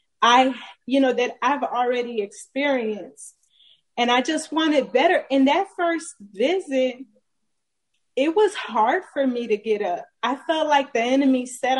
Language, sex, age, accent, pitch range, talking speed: English, female, 20-39, American, 235-310 Hz, 155 wpm